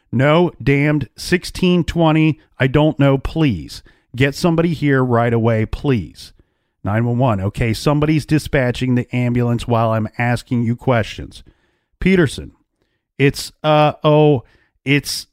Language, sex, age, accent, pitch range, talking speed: English, male, 40-59, American, 110-150 Hz, 115 wpm